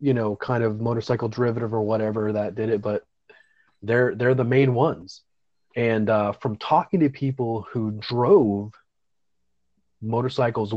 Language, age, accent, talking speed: English, 30-49, American, 145 wpm